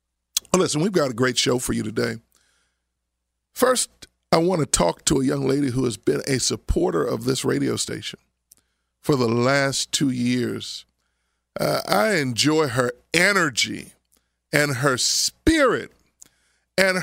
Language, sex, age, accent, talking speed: English, male, 40-59, American, 145 wpm